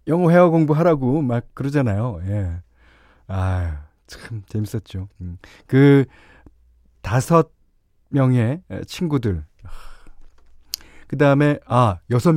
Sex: male